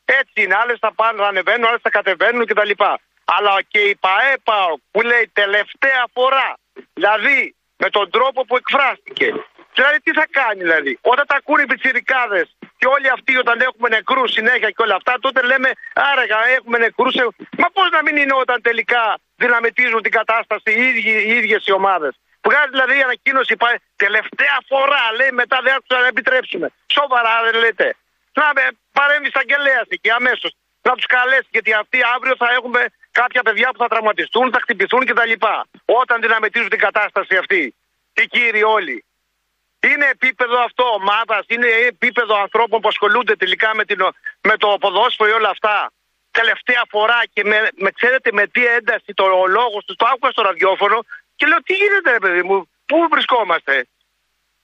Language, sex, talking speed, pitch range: Greek, male, 170 wpm, 215-265 Hz